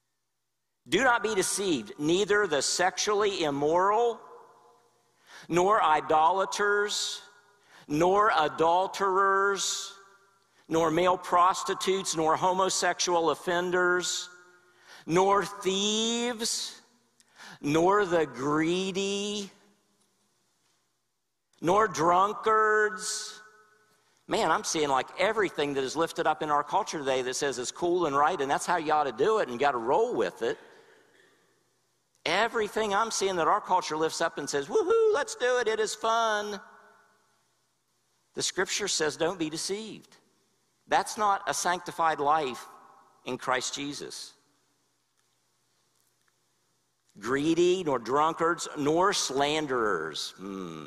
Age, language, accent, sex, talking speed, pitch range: 50-69, English, American, male, 115 wpm, 155-210 Hz